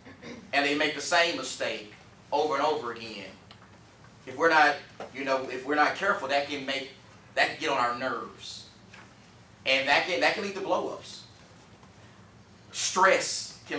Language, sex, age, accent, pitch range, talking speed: English, male, 30-49, American, 130-165 Hz, 170 wpm